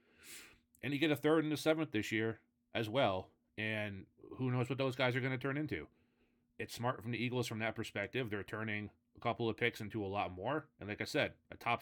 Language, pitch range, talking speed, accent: English, 105-125 Hz, 240 wpm, American